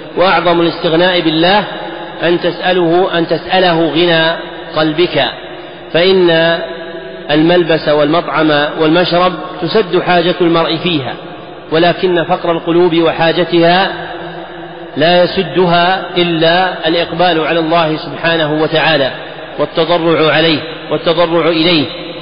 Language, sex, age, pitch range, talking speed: Arabic, male, 40-59, 155-175 Hz, 90 wpm